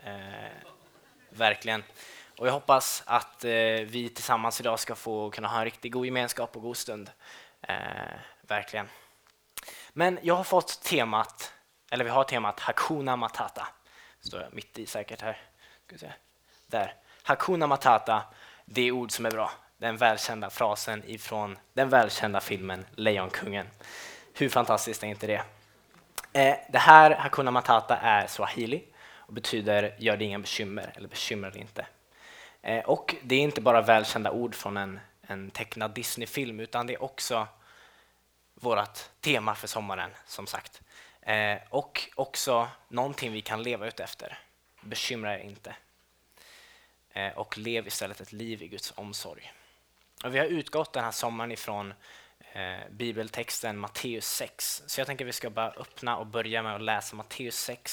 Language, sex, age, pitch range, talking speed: Swedish, male, 20-39, 105-120 Hz, 155 wpm